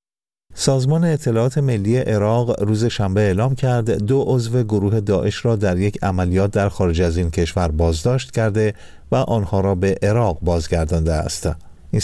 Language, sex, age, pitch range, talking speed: Persian, male, 50-69, 90-115 Hz, 155 wpm